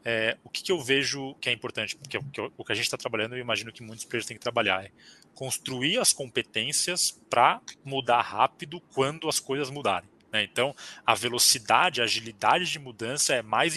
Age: 20-39